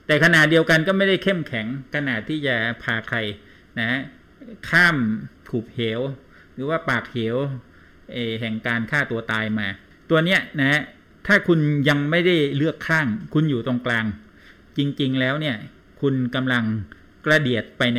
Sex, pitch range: male, 115-155 Hz